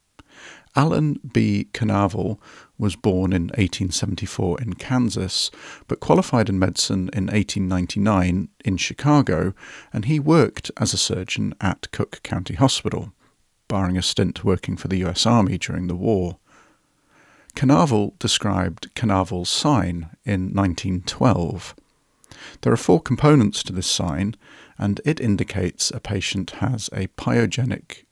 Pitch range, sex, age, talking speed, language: 90-110 Hz, male, 40-59, 125 wpm, English